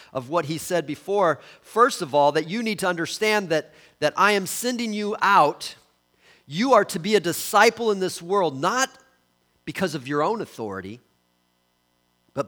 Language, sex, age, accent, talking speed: English, male, 40-59, American, 175 wpm